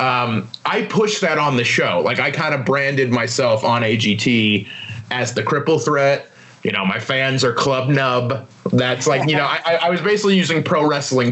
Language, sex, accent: English, male, American